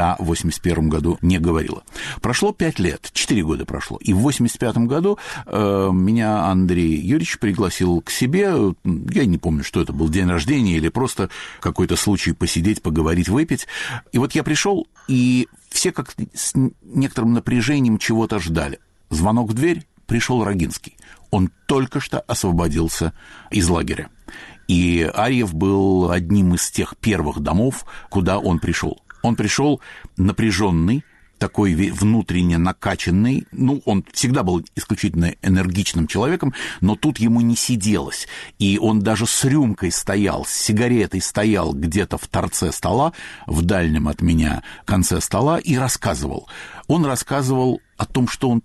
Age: 60-79